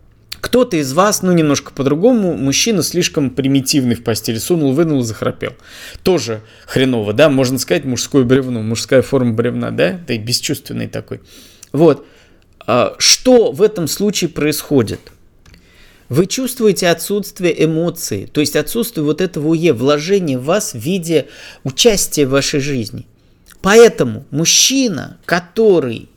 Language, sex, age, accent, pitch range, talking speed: Russian, male, 20-39, native, 130-205 Hz, 130 wpm